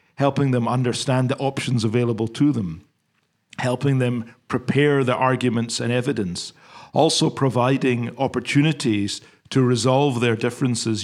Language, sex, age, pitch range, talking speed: English, male, 40-59, 115-140 Hz, 120 wpm